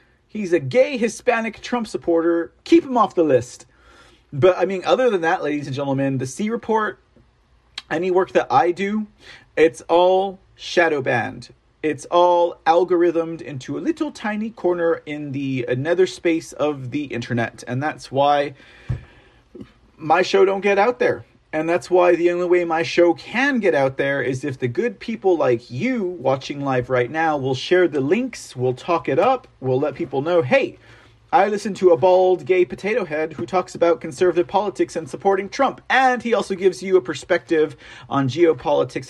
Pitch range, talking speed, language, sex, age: 130-185 Hz, 180 wpm, English, male, 40-59